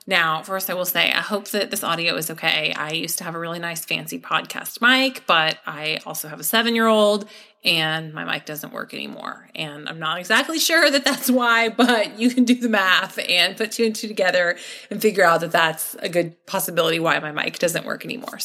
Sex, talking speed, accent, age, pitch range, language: female, 220 wpm, American, 30-49, 175-255 Hz, English